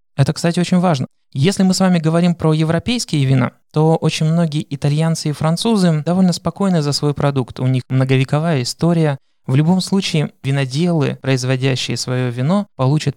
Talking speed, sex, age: 160 wpm, male, 20-39